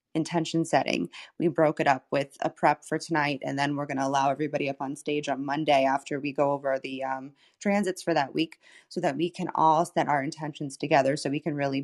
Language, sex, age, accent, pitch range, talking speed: English, female, 20-39, American, 150-175 Hz, 235 wpm